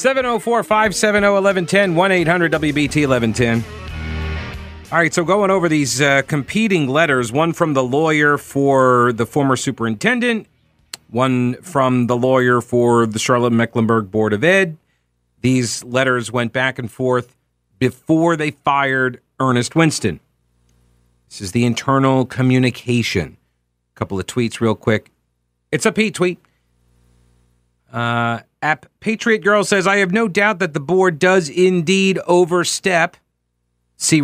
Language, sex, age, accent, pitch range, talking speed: English, male, 40-59, American, 110-175 Hz, 125 wpm